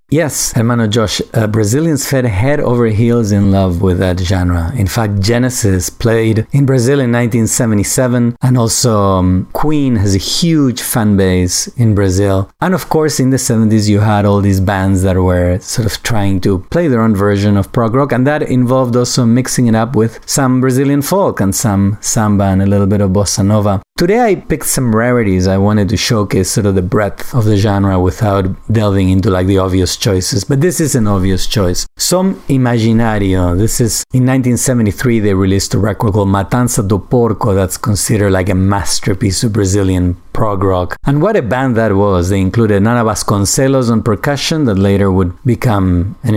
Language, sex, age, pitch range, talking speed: English, male, 30-49, 100-125 Hz, 190 wpm